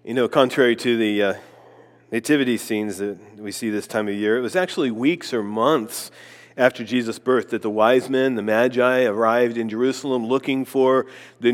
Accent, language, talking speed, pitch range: American, English, 185 wpm, 125-175 Hz